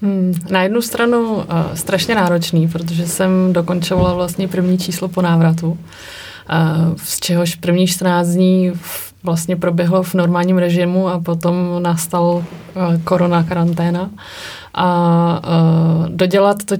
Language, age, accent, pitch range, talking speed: Czech, 30-49, native, 170-185 Hz, 110 wpm